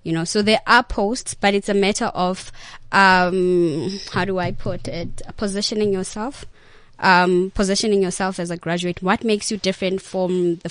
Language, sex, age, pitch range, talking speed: English, female, 20-39, 175-200 Hz, 175 wpm